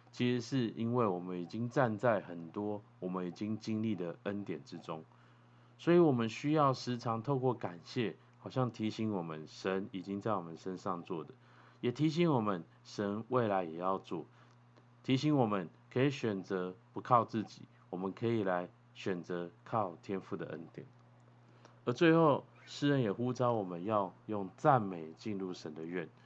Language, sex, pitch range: Chinese, male, 95-125 Hz